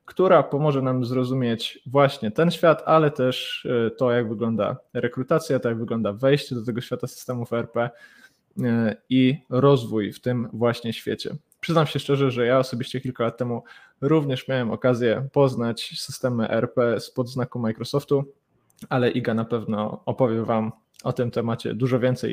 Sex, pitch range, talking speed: male, 115-135 Hz, 155 wpm